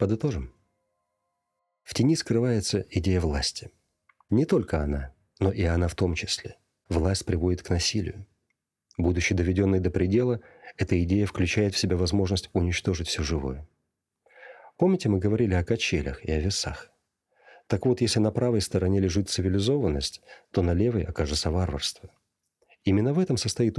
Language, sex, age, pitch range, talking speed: Russian, male, 40-59, 90-115 Hz, 145 wpm